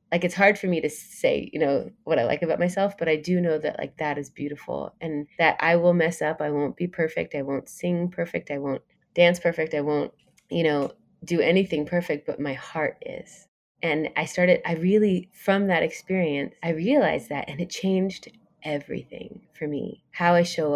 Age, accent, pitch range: 20-39, American, 150-180 Hz